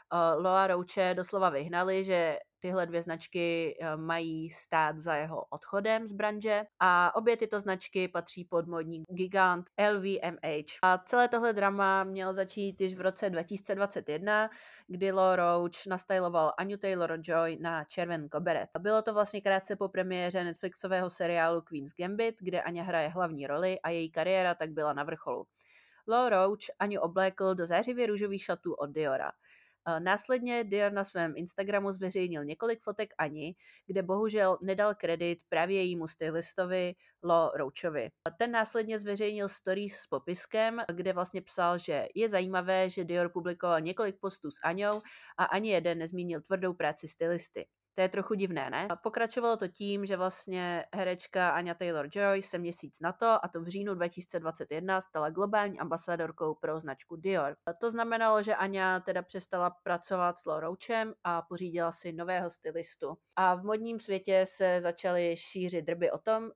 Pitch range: 170-200 Hz